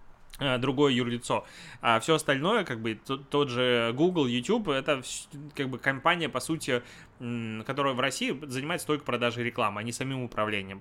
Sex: male